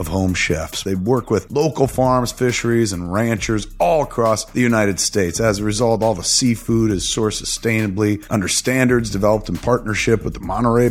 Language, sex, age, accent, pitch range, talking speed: English, male, 30-49, American, 105-135 Hz, 180 wpm